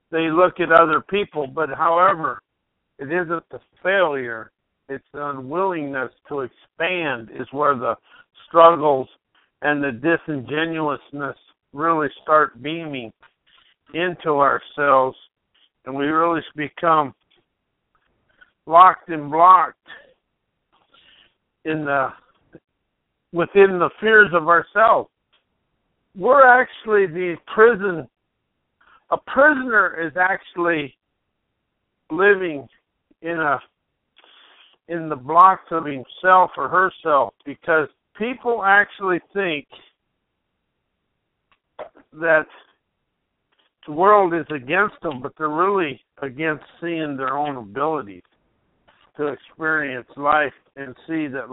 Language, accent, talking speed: English, American, 100 wpm